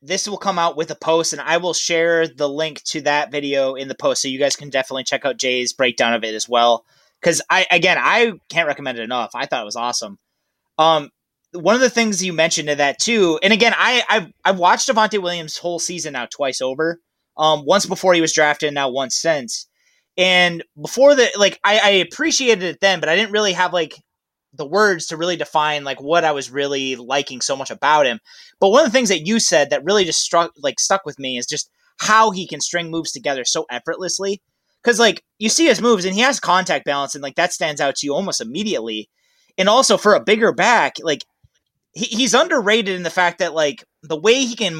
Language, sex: English, male